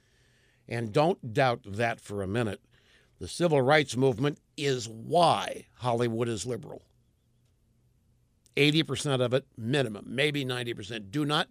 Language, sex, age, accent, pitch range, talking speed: English, male, 60-79, American, 120-185 Hz, 125 wpm